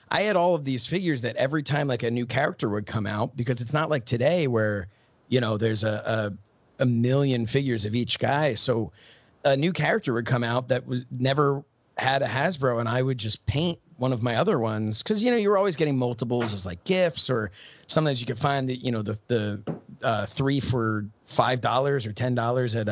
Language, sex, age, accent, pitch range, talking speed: English, male, 30-49, American, 115-140 Hz, 220 wpm